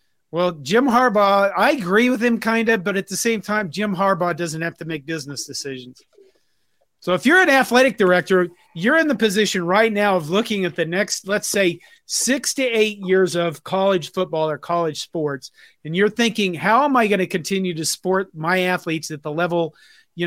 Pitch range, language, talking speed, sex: 165-215 Hz, English, 200 wpm, male